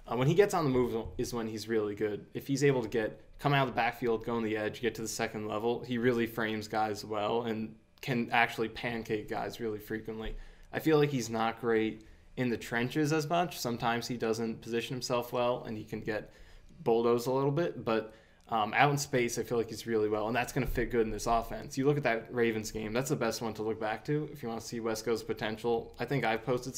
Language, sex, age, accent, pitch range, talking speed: English, male, 20-39, American, 110-130 Hz, 255 wpm